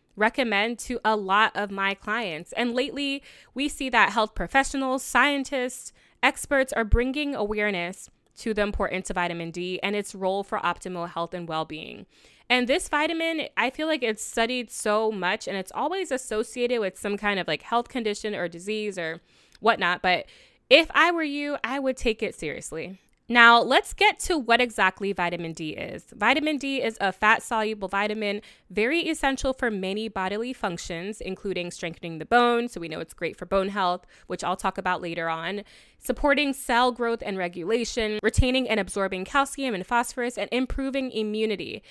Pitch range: 190-260 Hz